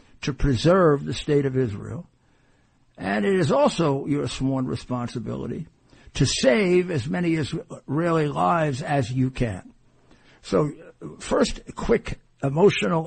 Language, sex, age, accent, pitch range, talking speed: English, male, 60-79, American, 125-155 Hz, 120 wpm